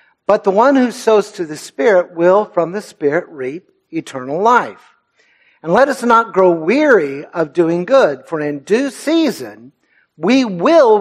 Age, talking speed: 60-79, 165 wpm